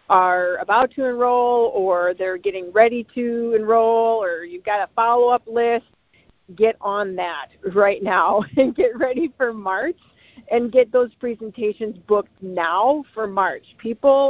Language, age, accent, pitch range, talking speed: English, 50-69, American, 190-240 Hz, 145 wpm